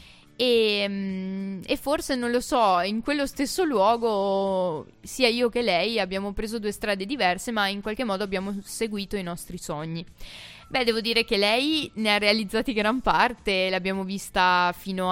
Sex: female